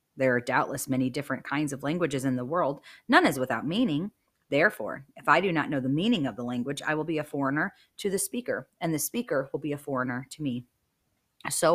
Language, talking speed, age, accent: English, 225 wpm, 30-49, American